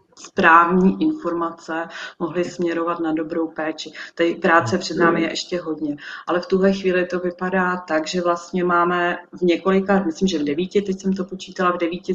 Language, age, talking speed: Czech, 30-49, 180 wpm